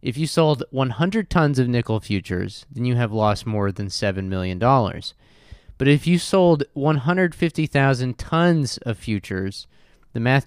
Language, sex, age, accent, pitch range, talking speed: English, male, 20-39, American, 100-130 Hz, 150 wpm